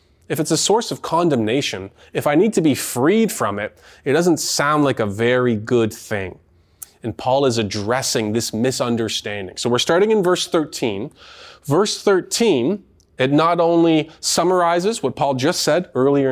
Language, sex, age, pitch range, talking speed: English, male, 20-39, 115-185 Hz, 165 wpm